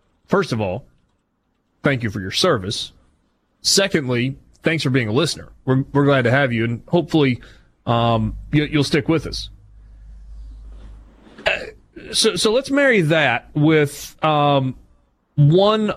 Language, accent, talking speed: English, American, 130 wpm